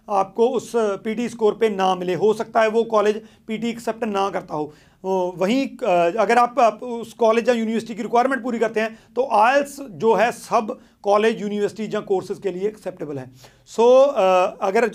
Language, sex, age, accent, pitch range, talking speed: Hindi, male, 40-59, native, 200-240 Hz, 185 wpm